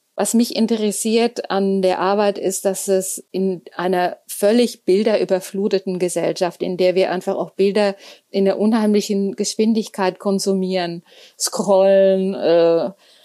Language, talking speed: German, 120 wpm